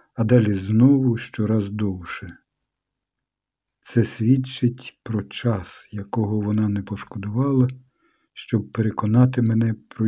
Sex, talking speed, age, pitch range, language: male, 100 wpm, 50-69, 110-130 Hz, Ukrainian